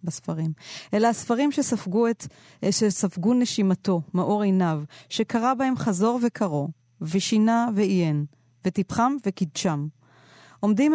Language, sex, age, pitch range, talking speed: Hebrew, female, 30-49, 165-230 Hz, 100 wpm